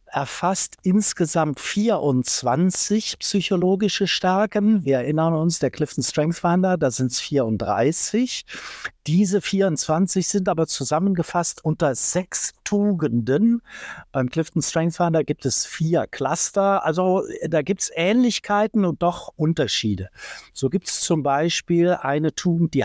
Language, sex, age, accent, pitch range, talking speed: German, male, 60-79, German, 130-170 Hz, 125 wpm